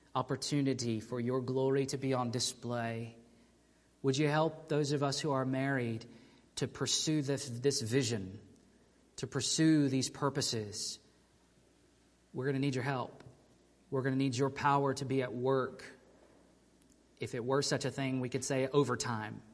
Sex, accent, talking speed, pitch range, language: male, American, 160 wpm, 115-135 Hz, English